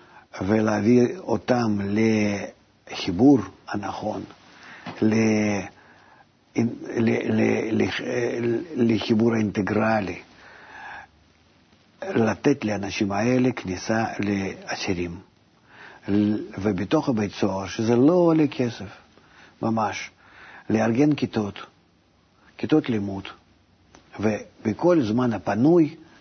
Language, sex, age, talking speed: Hebrew, male, 50-69, 60 wpm